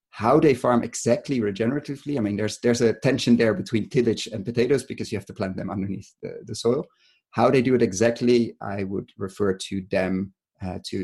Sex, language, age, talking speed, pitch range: male, English, 30-49, 205 wpm, 100-120 Hz